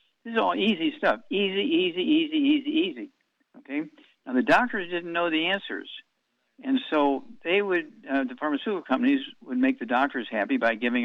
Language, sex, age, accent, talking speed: English, male, 60-79, American, 180 wpm